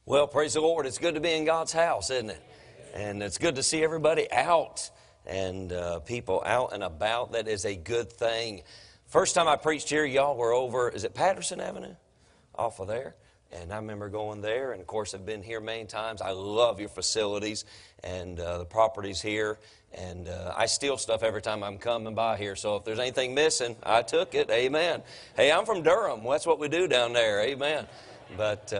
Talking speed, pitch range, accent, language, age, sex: 210 wpm, 105-140 Hz, American, English, 40-59, male